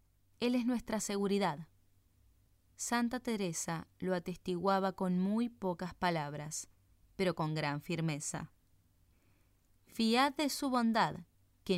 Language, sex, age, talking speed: Spanish, female, 20-39, 105 wpm